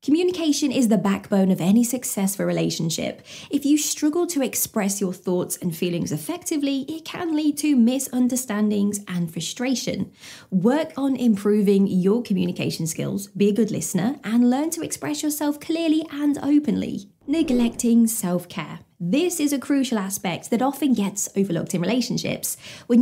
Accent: British